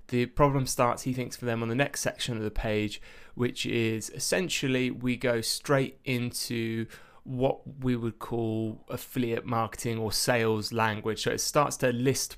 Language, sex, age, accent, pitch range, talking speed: English, male, 20-39, British, 115-135 Hz, 170 wpm